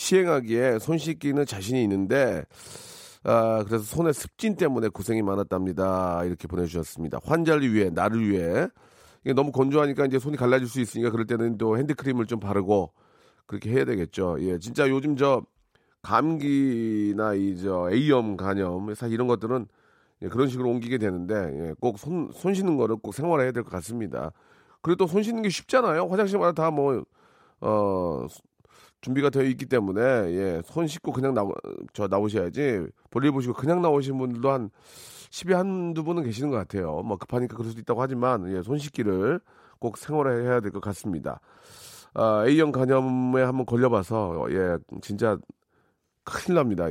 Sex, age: male, 40-59